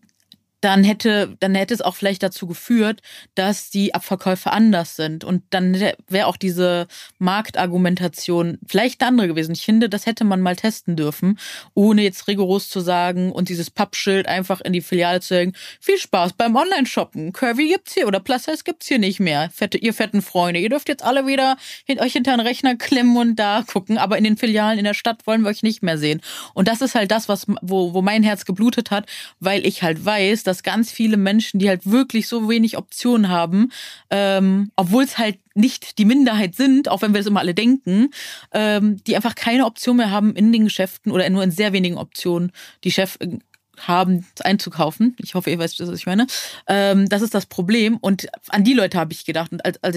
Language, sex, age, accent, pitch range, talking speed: German, female, 30-49, German, 185-230 Hz, 205 wpm